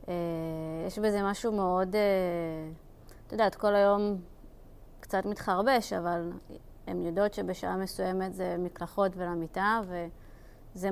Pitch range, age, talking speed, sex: 175-215 Hz, 20-39, 105 wpm, female